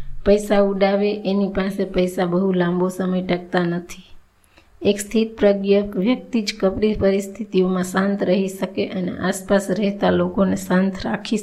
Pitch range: 185-205 Hz